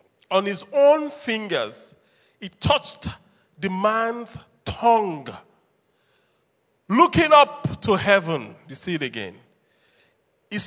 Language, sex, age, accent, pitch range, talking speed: English, male, 40-59, Nigerian, 180-290 Hz, 100 wpm